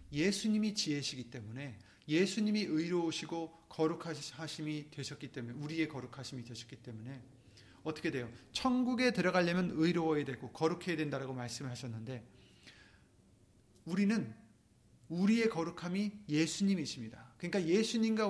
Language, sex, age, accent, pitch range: Korean, male, 30-49, native, 115-185 Hz